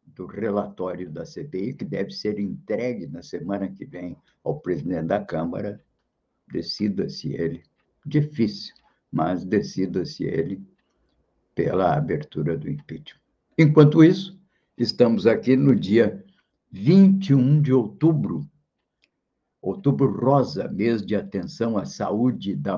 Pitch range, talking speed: 105-150 Hz, 115 wpm